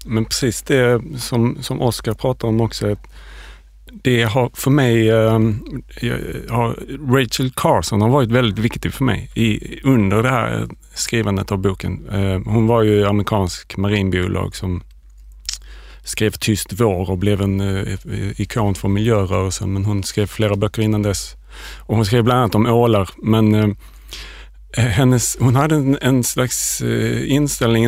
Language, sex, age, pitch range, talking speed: Swedish, male, 30-49, 100-120 Hz, 135 wpm